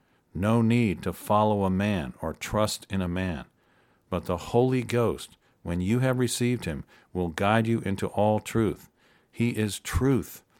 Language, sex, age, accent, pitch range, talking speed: English, male, 50-69, American, 95-115 Hz, 165 wpm